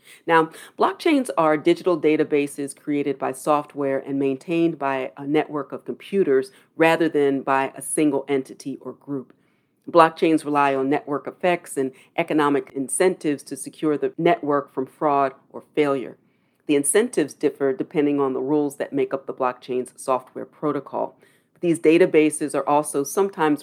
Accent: American